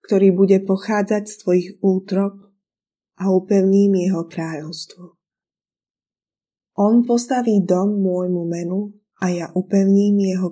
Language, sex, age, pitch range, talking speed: Slovak, female, 20-39, 175-205 Hz, 110 wpm